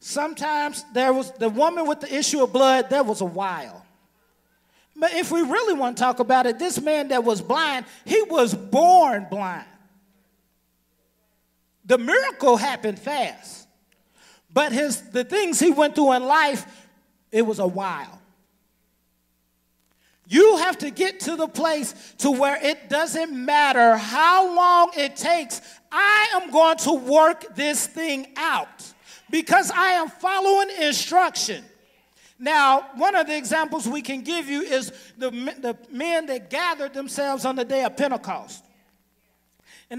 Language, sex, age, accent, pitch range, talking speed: English, male, 40-59, American, 235-330 Hz, 150 wpm